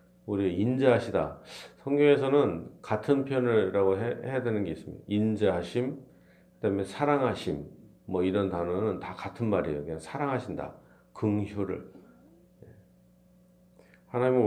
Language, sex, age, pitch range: Korean, male, 40-59, 90-125 Hz